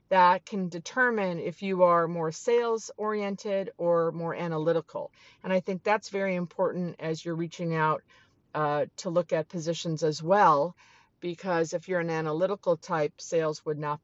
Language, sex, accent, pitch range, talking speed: English, female, American, 165-205 Hz, 160 wpm